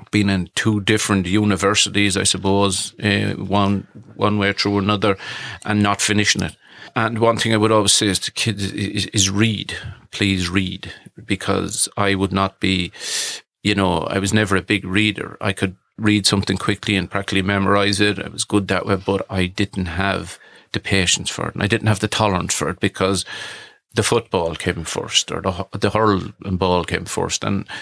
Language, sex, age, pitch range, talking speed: English, male, 40-59, 95-105 Hz, 190 wpm